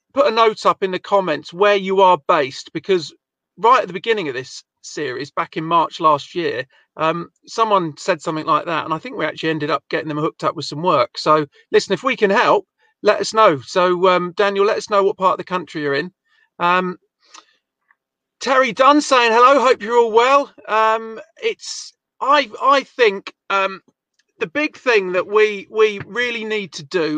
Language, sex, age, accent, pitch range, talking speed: English, male, 40-59, British, 175-230 Hz, 200 wpm